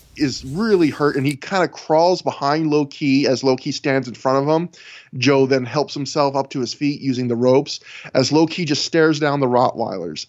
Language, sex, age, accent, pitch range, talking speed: English, male, 20-39, American, 130-165 Hz, 220 wpm